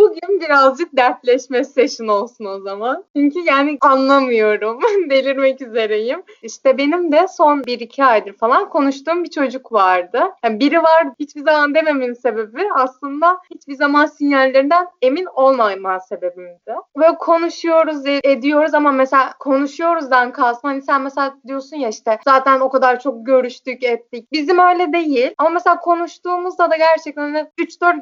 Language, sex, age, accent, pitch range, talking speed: Turkish, female, 20-39, native, 250-330 Hz, 140 wpm